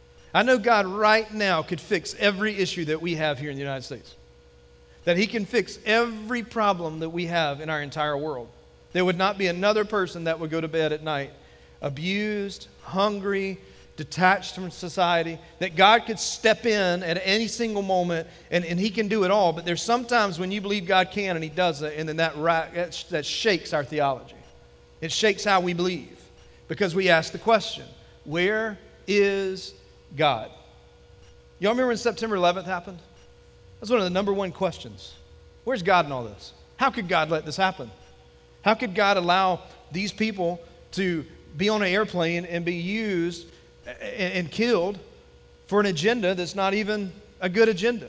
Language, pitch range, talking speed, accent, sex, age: English, 155-205 Hz, 180 wpm, American, male, 40-59